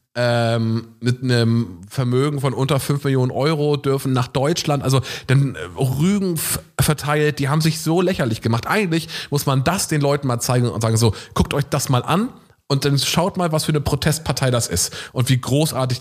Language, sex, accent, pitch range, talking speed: German, male, German, 115-145 Hz, 195 wpm